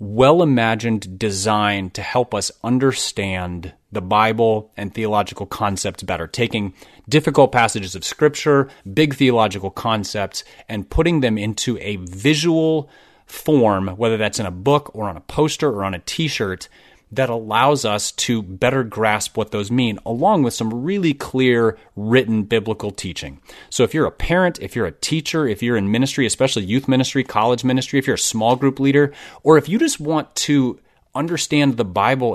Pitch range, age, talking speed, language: 100-135 Hz, 30-49, 165 wpm, English